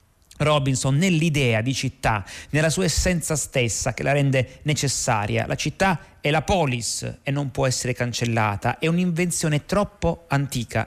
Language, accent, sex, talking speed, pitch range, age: Italian, native, male, 145 wpm, 125-160 Hz, 30-49